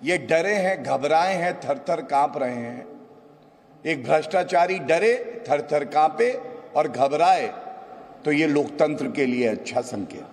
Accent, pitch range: Indian, 135-190 Hz